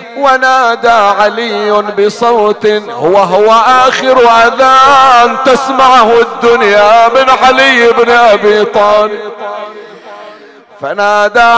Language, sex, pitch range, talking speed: Arabic, male, 235-260 Hz, 75 wpm